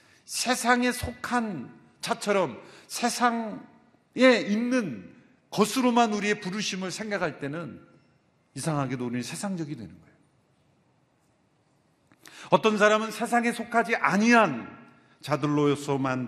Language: Korean